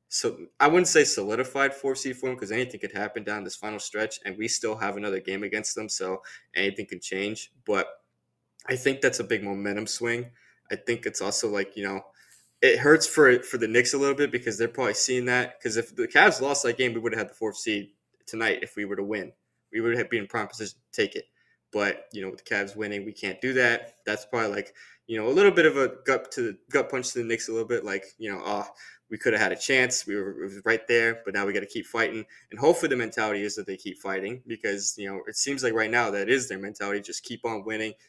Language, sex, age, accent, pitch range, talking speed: English, male, 20-39, American, 100-125 Hz, 260 wpm